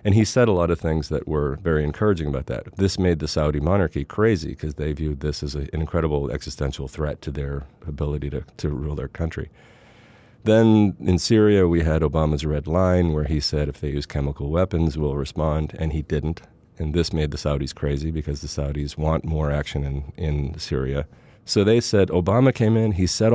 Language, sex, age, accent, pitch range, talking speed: English, male, 40-59, American, 75-100 Hz, 205 wpm